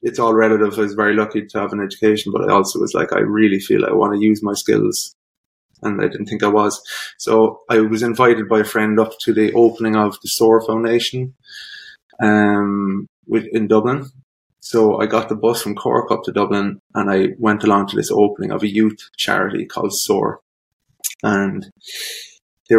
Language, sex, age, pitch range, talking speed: English, male, 20-39, 100-110 Hz, 195 wpm